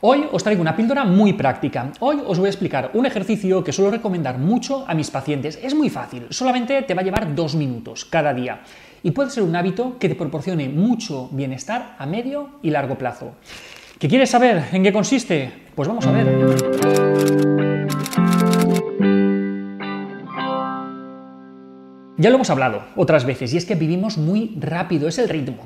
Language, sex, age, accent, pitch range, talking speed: Spanish, male, 30-49, Spanish, 130-185 Hz, 170 wpm